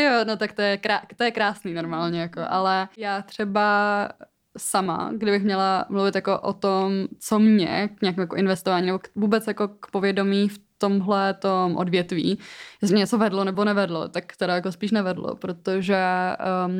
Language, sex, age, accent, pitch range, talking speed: Czech, female, 20-39, native, 185-205 Hz, 175 wpm